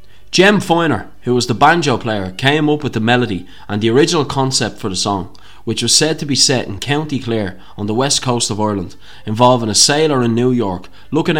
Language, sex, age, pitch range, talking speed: English, male, 20-39, 105-140 Hz, 215 wpm